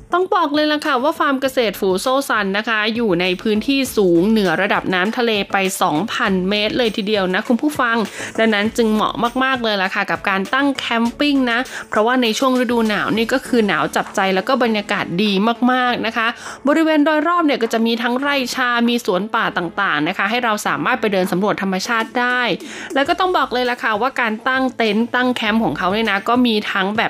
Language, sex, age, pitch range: Thai, female, 20-39, 200-255 Hz